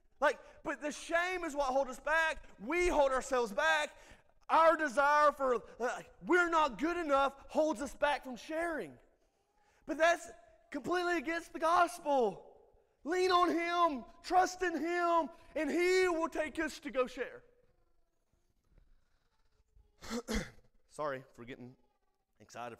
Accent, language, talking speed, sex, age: American, English, 130 wpm, male, 30-49